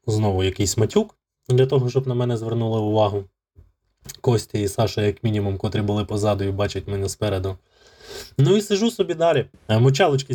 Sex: male